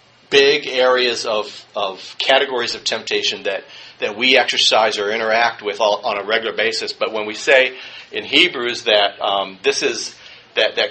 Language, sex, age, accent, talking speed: English, male, 40-59, American, 170 wpm